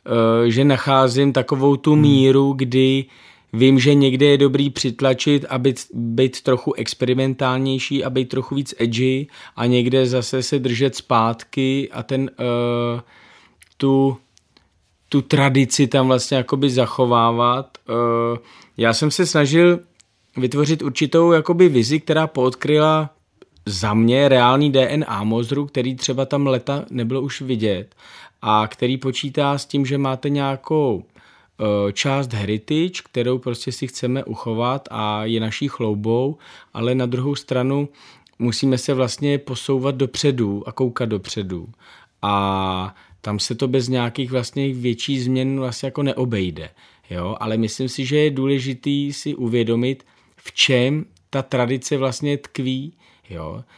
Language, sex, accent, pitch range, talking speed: Czech, male, native, 120-140 Hz, 135 wpm